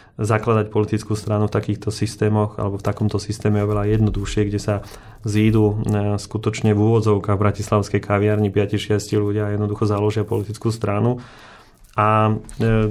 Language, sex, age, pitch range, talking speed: Slovak, male, 30-49, 105-110 Hz, 140 wpm